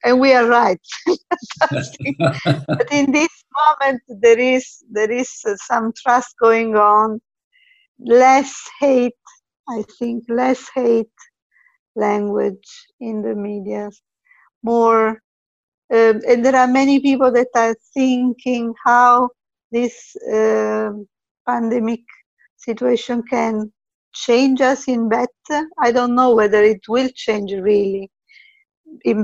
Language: English